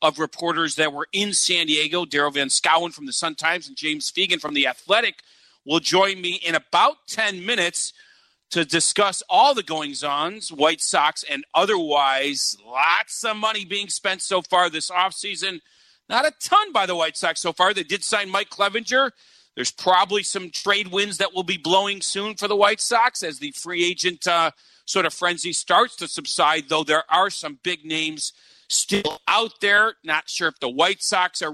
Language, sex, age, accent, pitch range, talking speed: English, male, 40-59, American, 160-200 Hz, 190 wpm